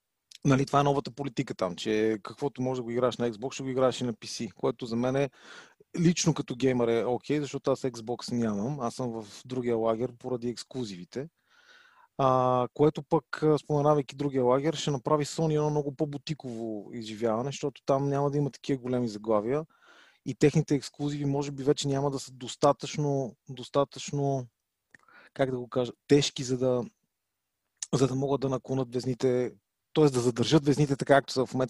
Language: Bulgarian